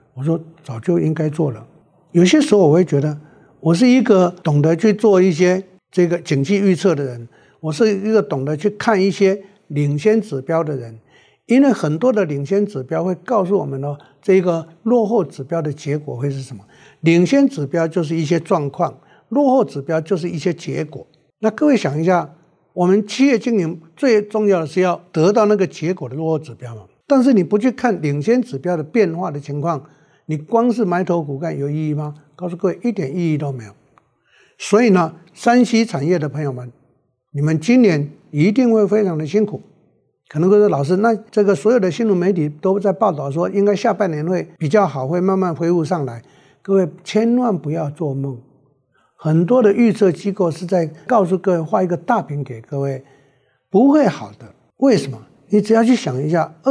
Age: 60-79